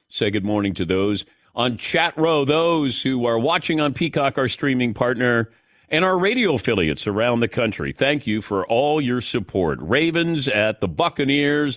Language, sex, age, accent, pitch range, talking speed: English, male, 50-69, American, 110-155 Hz, 175 wpm